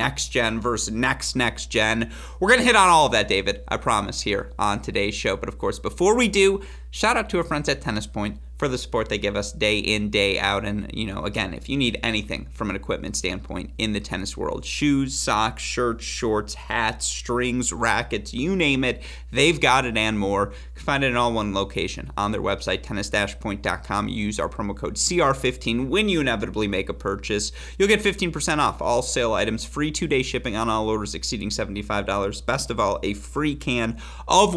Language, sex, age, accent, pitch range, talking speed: English, male, 30-49, American, 100-130 Hz, 205 wpm